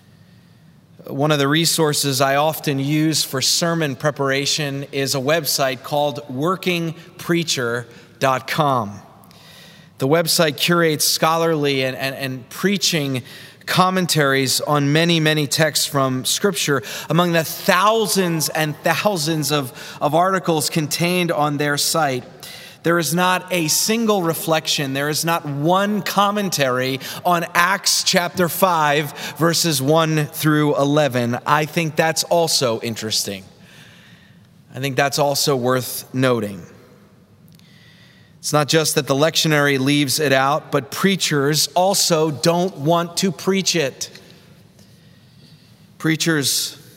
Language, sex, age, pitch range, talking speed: English, male, 30-49, 140-170 Hz, 115 wpm